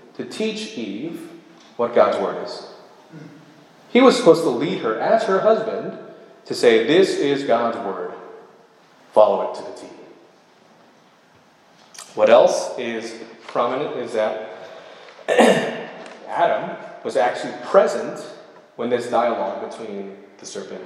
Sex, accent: male, American